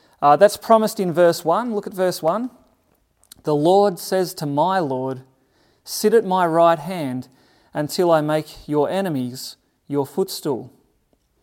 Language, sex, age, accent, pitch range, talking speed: English, male, 30-49, Australian, 165-230 Hz, 145 wpm